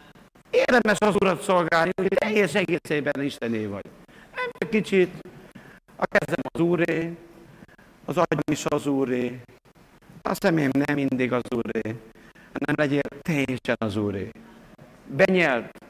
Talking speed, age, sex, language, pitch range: 125 wpm, 60-79, male, Hungarian, 130-175 Hz